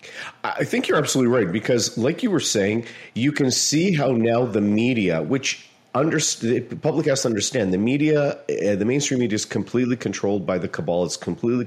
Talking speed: 190 wpm